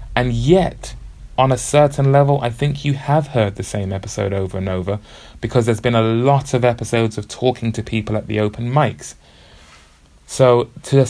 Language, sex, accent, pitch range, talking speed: English, male, British, 105-130 Hz, 190 wpm